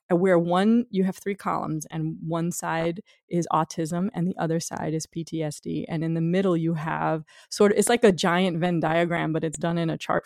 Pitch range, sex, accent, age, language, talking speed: 165-205 Hz, female, American, 30-49, English, 215 wpm